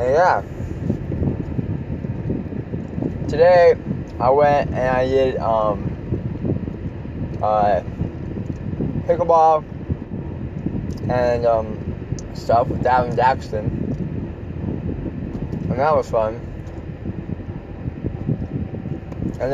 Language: English